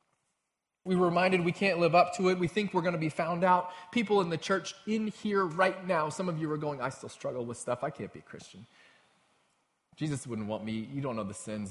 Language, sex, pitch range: English, male, 125-190 Hz